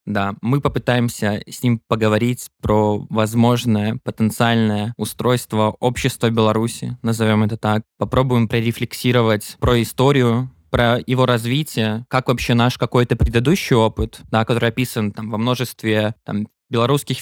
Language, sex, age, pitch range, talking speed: Russian, male, 20-39, 110-130 Hz, 125 wpm